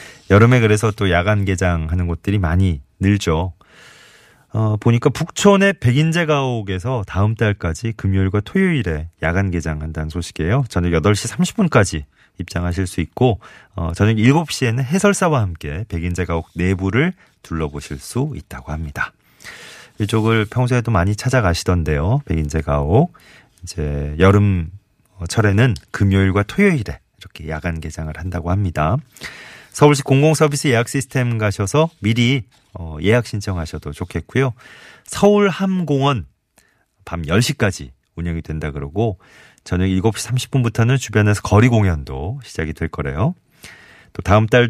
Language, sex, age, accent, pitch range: Korean, male, 30-49, native, 85-125 Hz